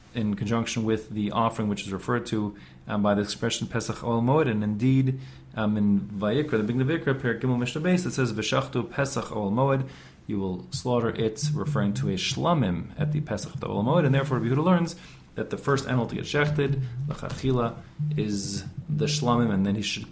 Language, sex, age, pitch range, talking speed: English, male, 30-49, 105-140 Hz, 190 wpm